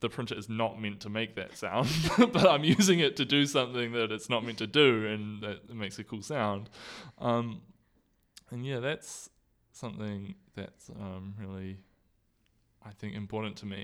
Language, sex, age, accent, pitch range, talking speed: English, male, 20-39, Australian, 100-115 Hz, 180 wpm